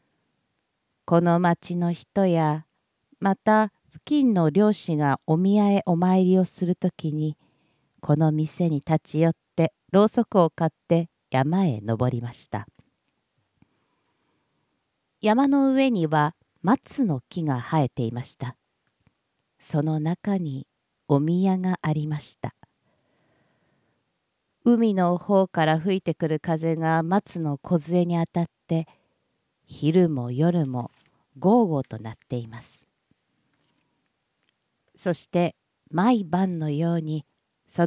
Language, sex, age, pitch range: Japanese, female, 50-69, 150-185 Hz